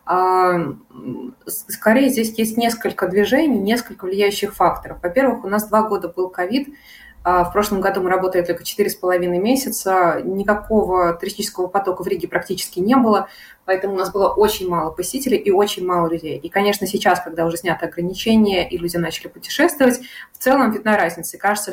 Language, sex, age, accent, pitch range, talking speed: Russian, female, 20-39, native, 180-220 Hz, 160 wpm